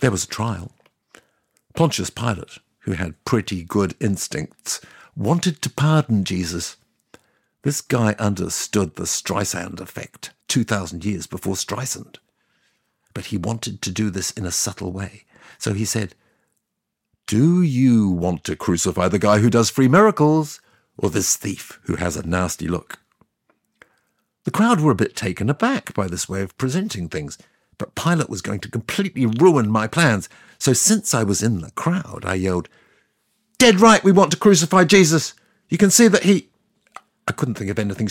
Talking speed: 165 wpm